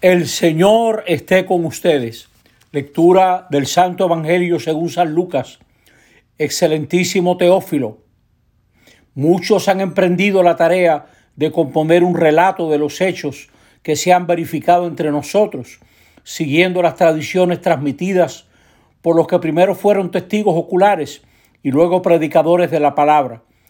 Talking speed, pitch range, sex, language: 125 wpm, 150-185 Hz, male, Spanish